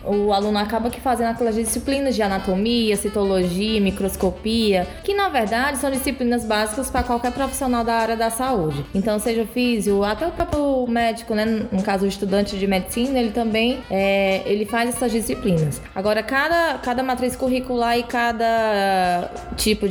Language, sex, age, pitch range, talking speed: Portuguese, female, 20-39, 210-255 Hz, 155 wpm